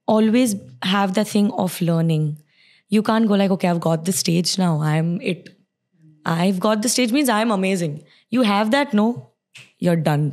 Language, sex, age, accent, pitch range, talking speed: English, female, 20-39, Indian, 165-205 Hz, 180 wpm